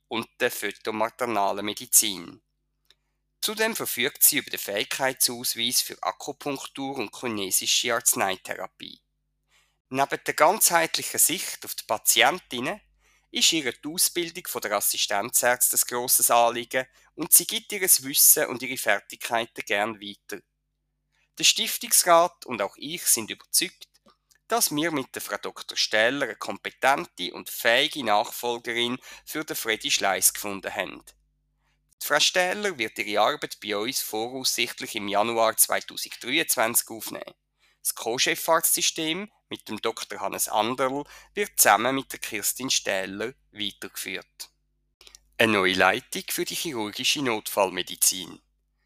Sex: male